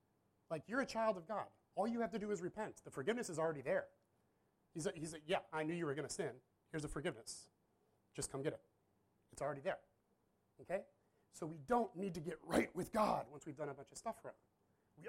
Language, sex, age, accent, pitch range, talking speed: English, male, 30-49, American, 110-170 Hz, 235 wpm